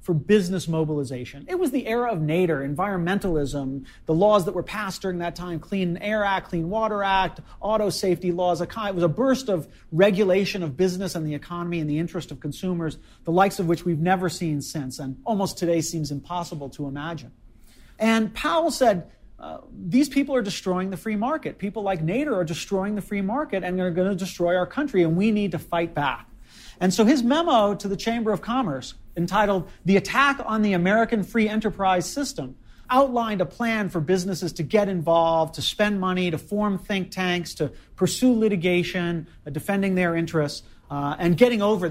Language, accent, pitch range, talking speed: English, American, 160-210 Hz, 190 wpm